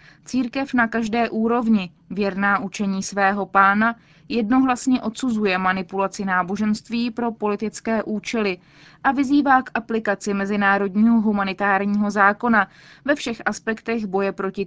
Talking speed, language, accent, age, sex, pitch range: 110 wpm, Czech, native, 20-39, female, 190-225 Hz